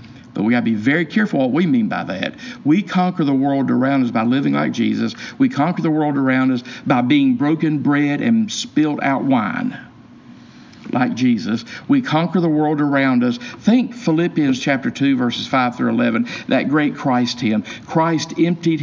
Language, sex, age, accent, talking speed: English, male, 50-69, American, 185 wpm